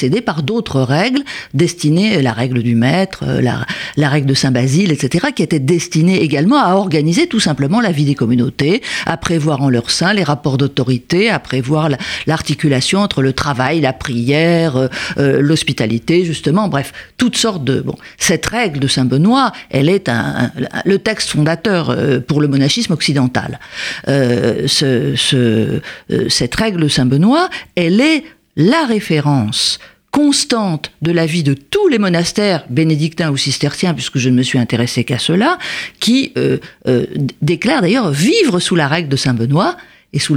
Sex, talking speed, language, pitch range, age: female, 160 wpm, French, 135-190 Hz, 50-69